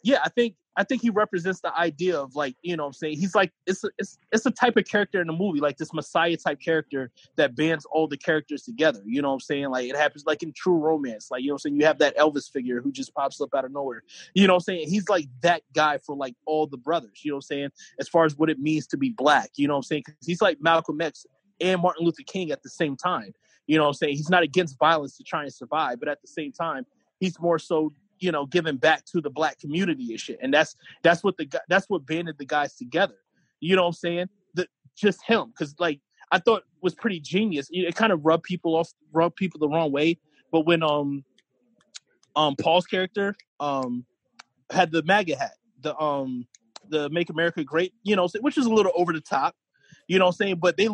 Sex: male